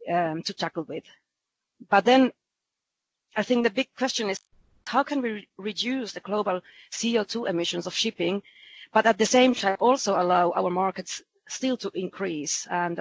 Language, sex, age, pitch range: English, female, 40-59, 175-225 Hz